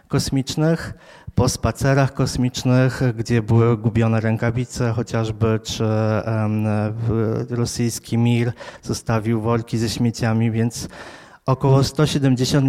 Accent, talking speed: native, 100 wpm